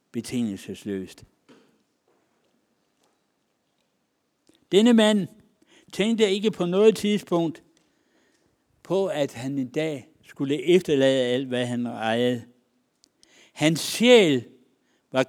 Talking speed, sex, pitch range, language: 85 wpm, male, 130-195 Hz, Danish